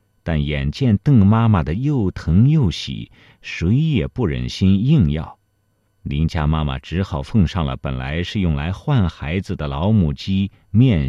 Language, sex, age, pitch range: Chinese, male, 50-69, 80-110 Hz